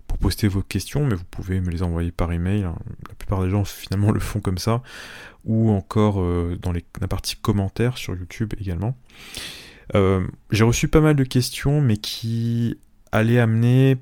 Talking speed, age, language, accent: 180 wpm, 30-49, French, French